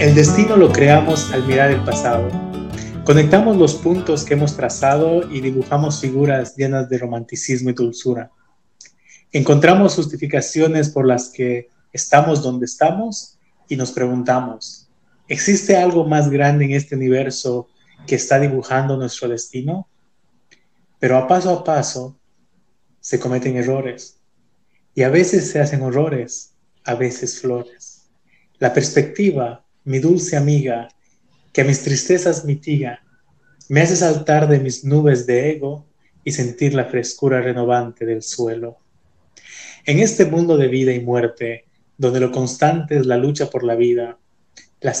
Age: 30-49